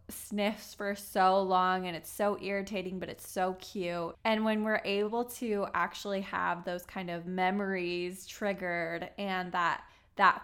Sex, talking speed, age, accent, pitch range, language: female, 155 wpm, 20-39, American, 175-200 Hz, English